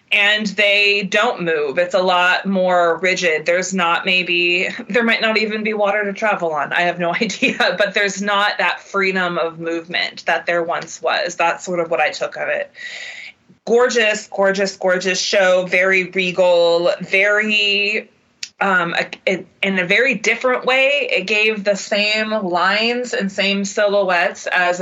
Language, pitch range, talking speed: English, 180-215 Hz, 160 wpm